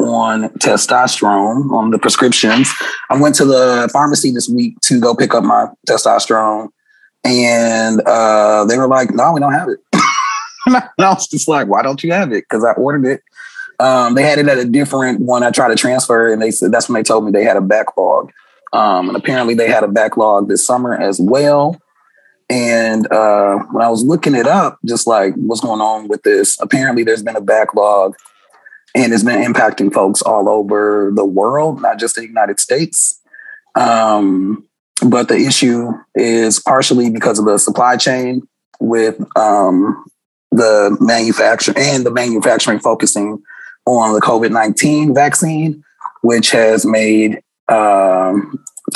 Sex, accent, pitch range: male, American, 110-145 Hz